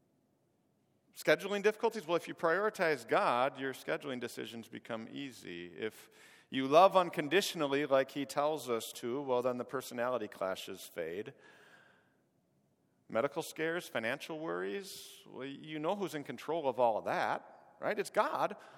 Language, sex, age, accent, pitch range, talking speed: English, male, 50-69, American, 125-175 Hz, 140 wpm